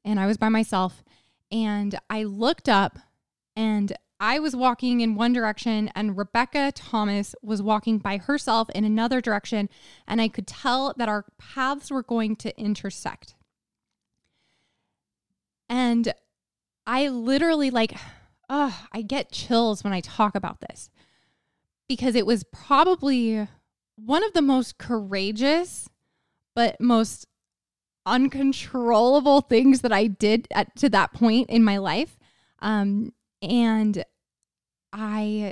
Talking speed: 130 wpm